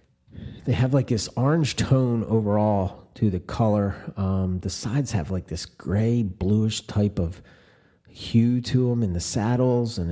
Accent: American